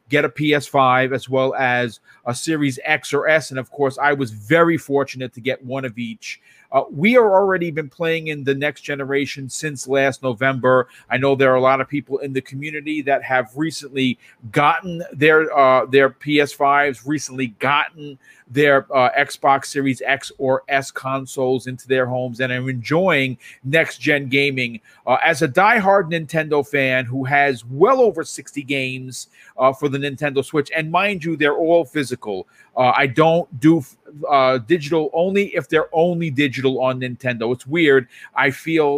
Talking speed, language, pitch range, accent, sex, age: 175 wpm, English, 130-160 Hz, American, male, 40-59